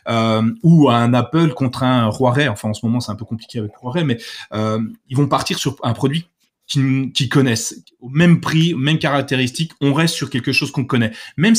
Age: 30-49